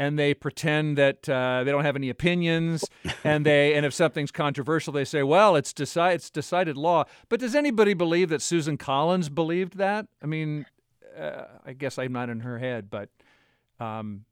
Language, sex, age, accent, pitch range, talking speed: English, male, 50-69, American, 130-160 Hz, 190 wpm